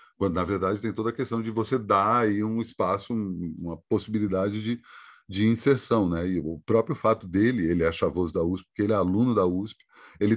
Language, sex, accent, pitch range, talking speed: Portuguese, male, Brazilian, 90-115 Hz, 205 wpm